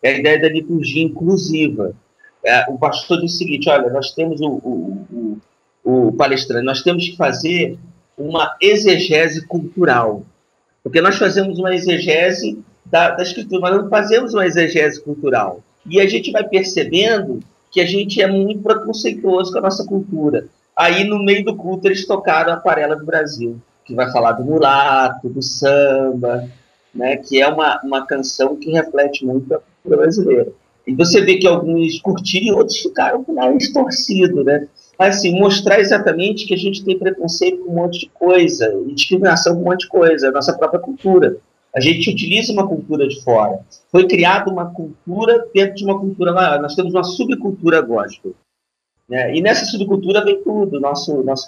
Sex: male